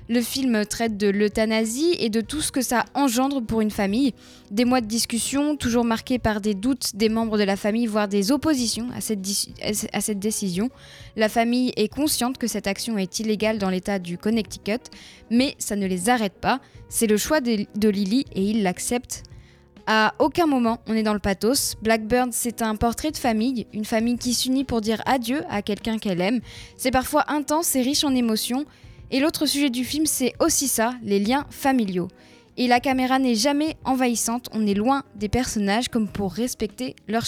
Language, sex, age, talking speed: French, female, 20-39, 195 wpm